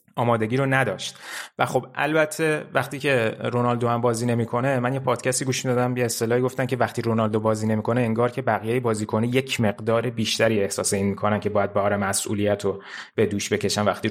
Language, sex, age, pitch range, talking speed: Persian, male, 30-49, 110-130 Hz, 210 wpm